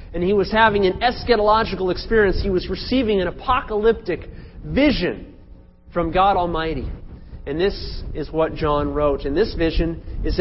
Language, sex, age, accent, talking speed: English, male, 30-49, American, 150 wpm